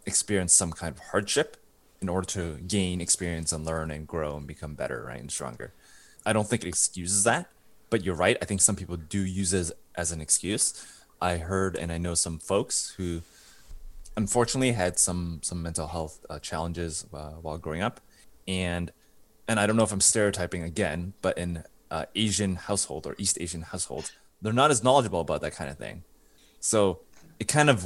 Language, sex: English, male